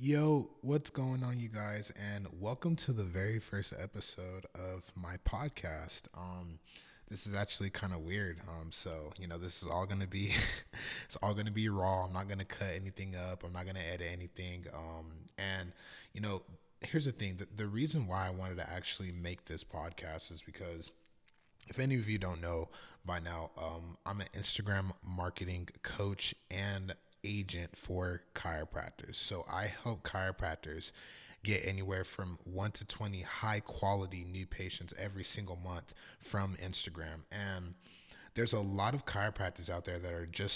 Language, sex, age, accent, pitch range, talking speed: English, male, 20-39, American, 90-100 Hz, 180 wpm